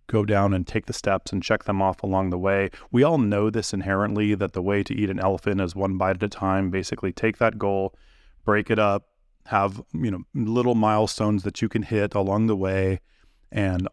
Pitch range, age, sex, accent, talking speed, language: 95-105 Hz, 30-49, male, American, 220 wpm, English